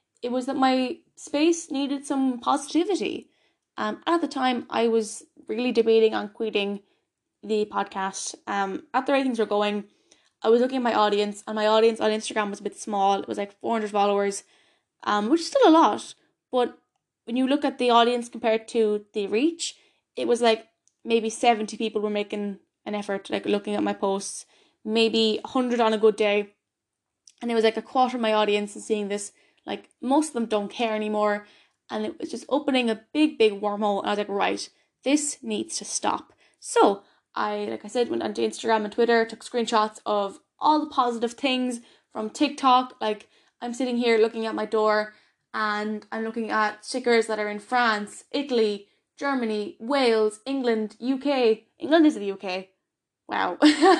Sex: female